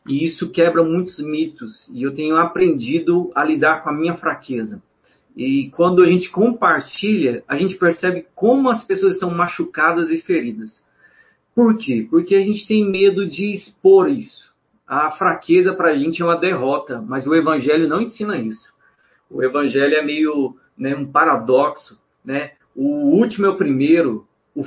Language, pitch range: Portuguese, 155-200 Hz